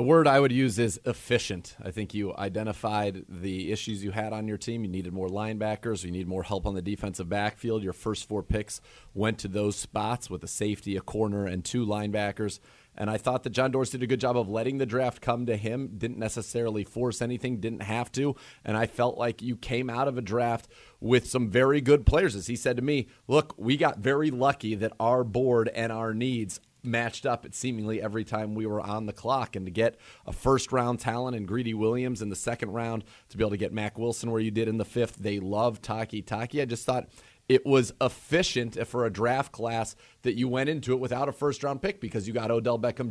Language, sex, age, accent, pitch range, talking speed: English, male, 30-49, American, 105-125 Hz, 230 wpm